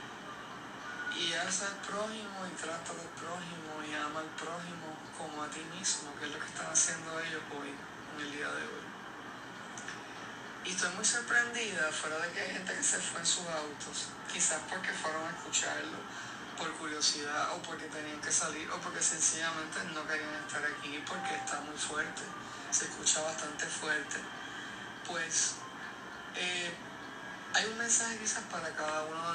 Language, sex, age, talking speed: Spanish, male, 20-39, 165 wpm